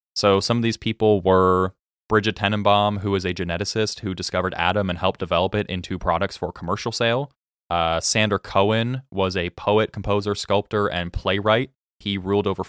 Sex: male